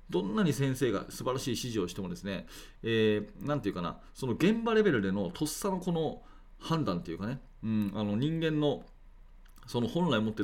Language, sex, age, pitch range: Japanese, male, 40-59, 110-160 Hz